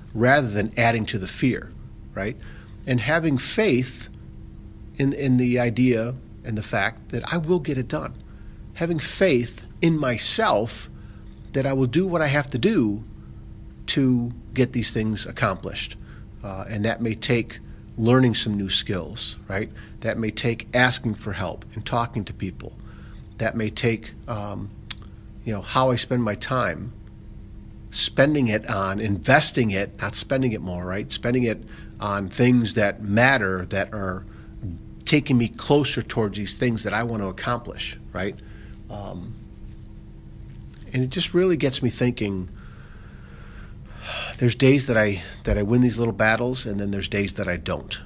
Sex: male